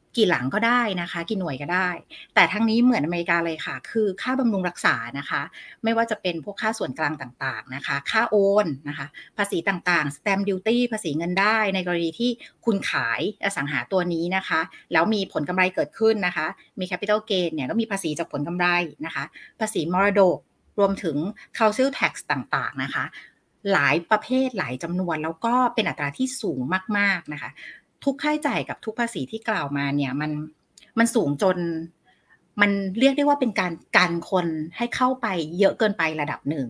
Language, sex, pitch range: Thai, female, 160-220 Hz